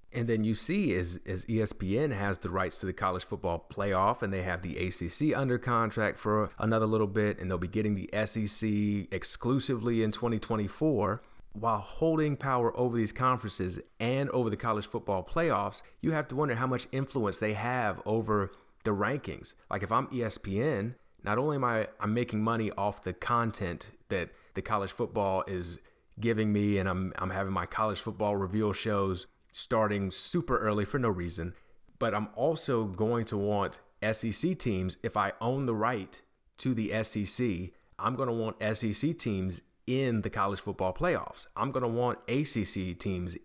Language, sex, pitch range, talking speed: English, male, 100-125 Hz, 175 wpm